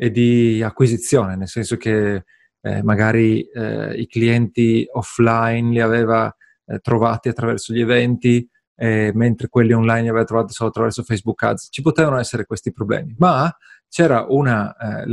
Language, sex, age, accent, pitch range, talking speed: Italian, male, 30-49, native, 115-135 Hz, 155 wpm